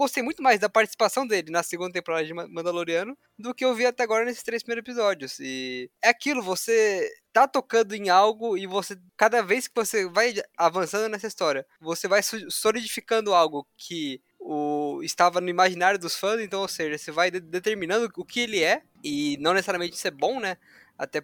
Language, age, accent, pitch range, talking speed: Portuguese, 20-39, Brazilian, 160-235 Hz, 195 wpm